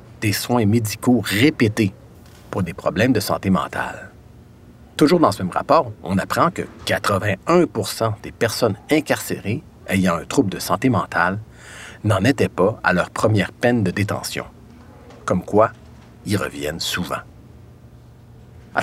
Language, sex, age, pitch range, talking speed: French, male, 50-69, 100-125 Hz, 135 wpm